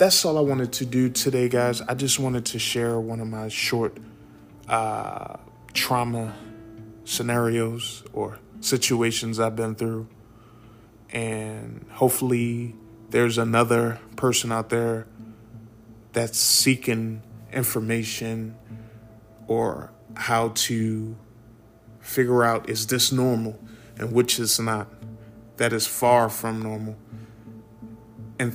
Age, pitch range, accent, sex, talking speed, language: 20-39, 110-120 Hz, American, male, 110 wpm, English